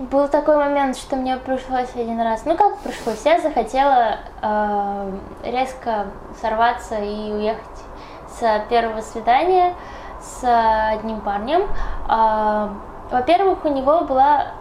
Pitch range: 220-280 Hz